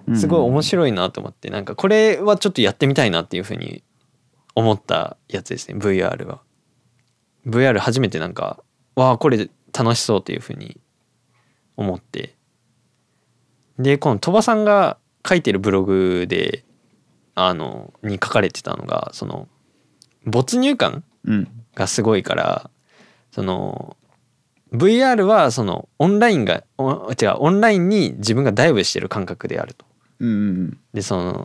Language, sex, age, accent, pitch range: Japanese, male, 20-39, native, 105-180 Hz